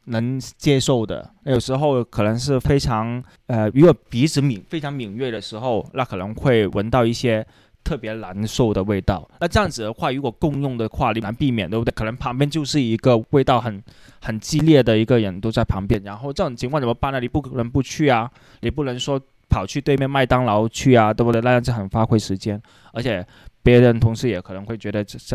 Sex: male